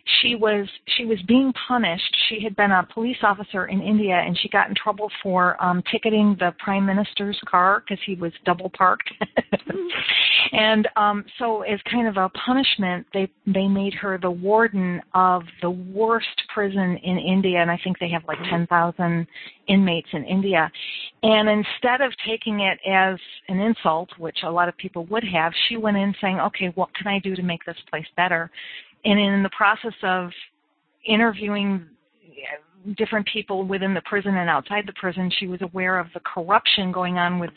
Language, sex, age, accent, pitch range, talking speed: English, female, 40-59, American, 180-215 Hz, 180 wpm